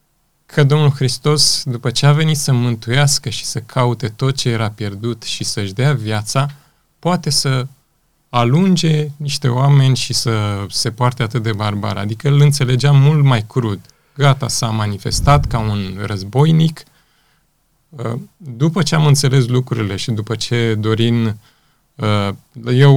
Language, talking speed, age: Romanian, 140 wpm, 20-39